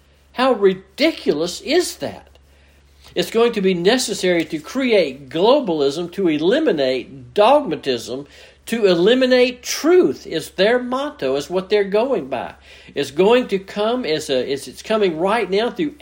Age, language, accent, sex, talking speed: 60-79, English, American, male, 140 wpm